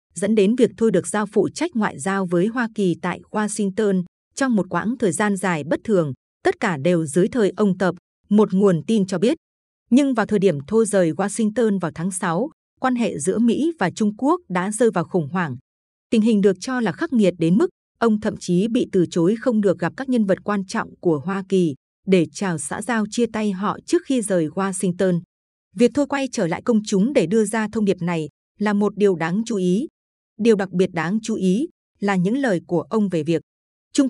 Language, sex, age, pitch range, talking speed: Vietnamese, female, 20-39, 180-230 Hz, 225 wpm